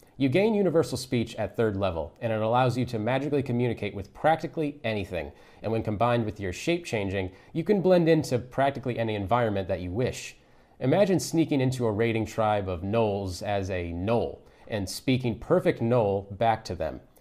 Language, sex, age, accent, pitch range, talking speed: English, male, 30-49, American, 100-135 Hz, 180 wpm